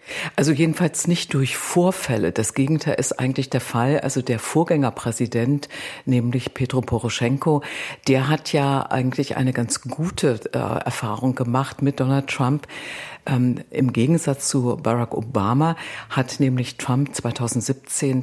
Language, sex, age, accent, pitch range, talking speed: German, female, 50-69, German, 125-145 Hz, 130 wpm